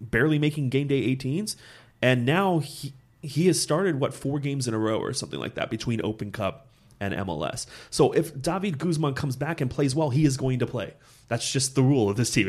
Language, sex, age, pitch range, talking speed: English, male, 30-49, 110-140 Hz, 225 wpm